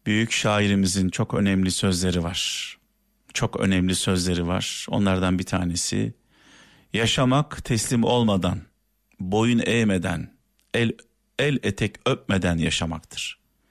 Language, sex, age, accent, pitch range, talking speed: Turkish, male, 50-69, native, 95-120 Hz, 100 wpm